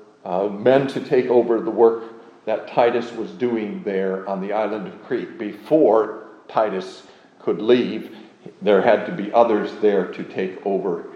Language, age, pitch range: English, 50-69, 100-120 Hz